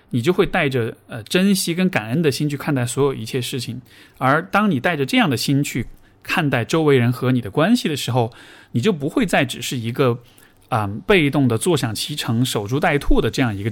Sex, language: male, Chinese